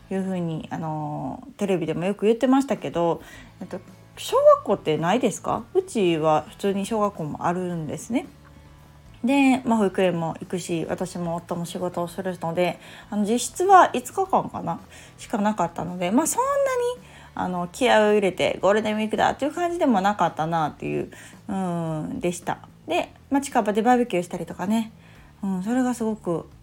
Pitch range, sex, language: 170-230 Hz, female, Japanese